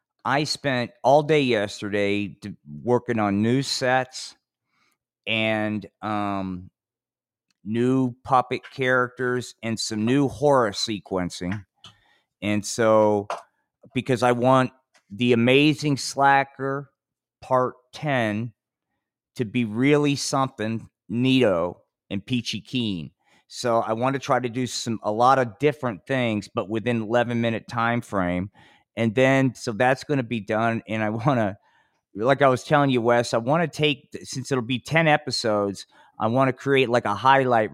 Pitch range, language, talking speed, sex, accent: 110-135 Hz, English, 145 wpm, male, American